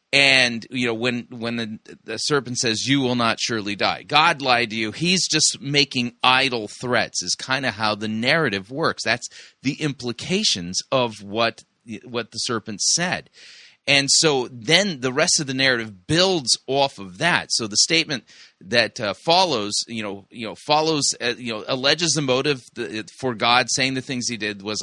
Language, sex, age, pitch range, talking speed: English, male, 30-49, 110-145 Hz, 185 wpm